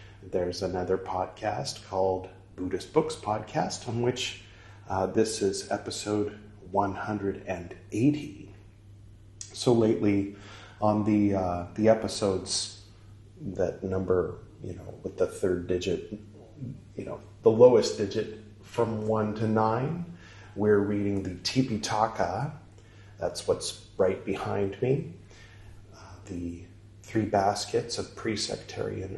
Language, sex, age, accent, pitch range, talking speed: English, male, 40-59, American, 95-110 Hz, 110 wpm